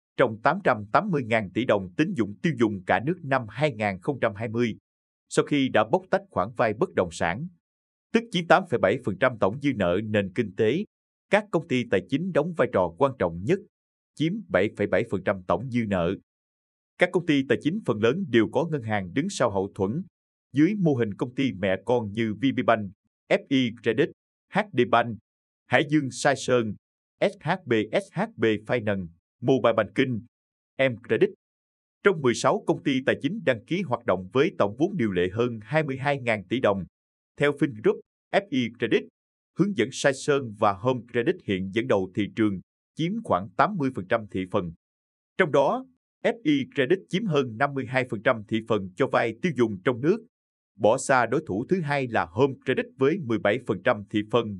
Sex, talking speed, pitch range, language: male, 170 wpm, 105-145 Hz, Vietnamese